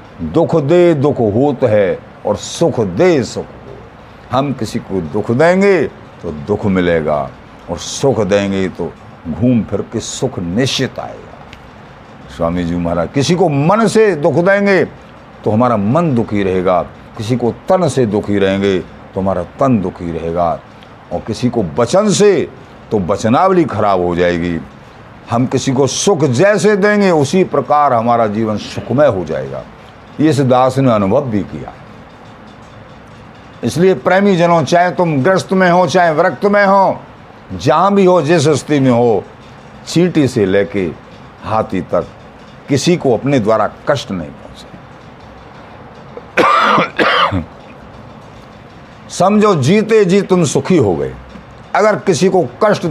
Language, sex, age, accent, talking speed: Hindi, male, 50-69, native, 140 wpm